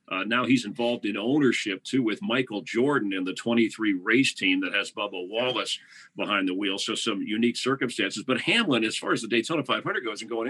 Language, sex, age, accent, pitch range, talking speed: English, male, 50-69, American, 105-130 Hz, 210 wpm